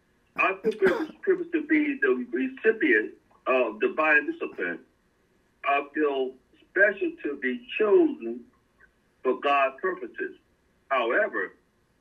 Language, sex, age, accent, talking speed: English, male, 60-79, American, 100 wpm